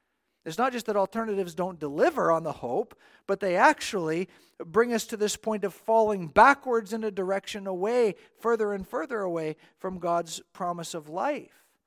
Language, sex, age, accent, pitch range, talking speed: English, male, 50-69, American, 180-235 Hz, 170 wpm